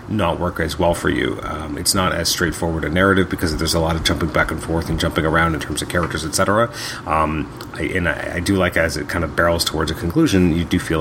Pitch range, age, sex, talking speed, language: 80-95 Hz, 30-49, male, 260 wpm, English